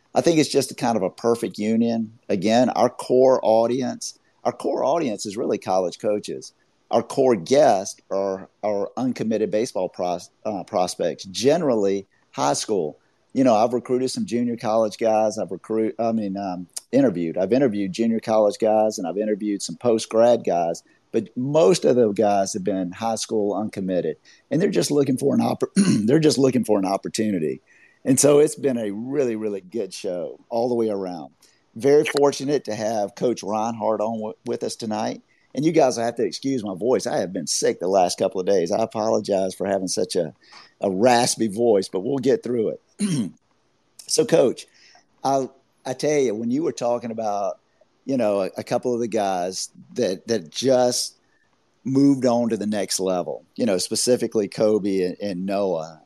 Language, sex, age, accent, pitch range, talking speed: English, male, 50-69, American, 100-125 Hz, 185 wpm